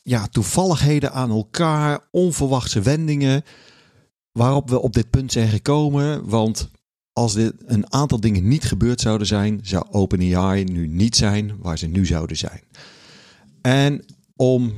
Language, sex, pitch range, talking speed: Dutch, male, 100-135 Hz, 140 wpm